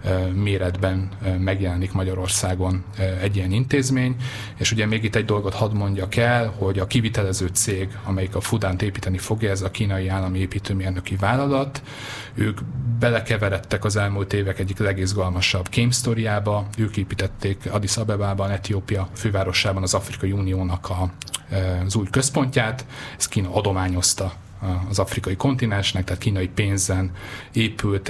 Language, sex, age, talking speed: Hungarian, male, 30-49, 130 wpm